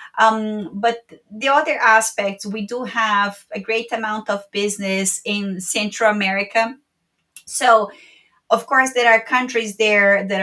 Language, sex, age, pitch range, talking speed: English, female, 30-49, 200-225 Hz, 140 wpm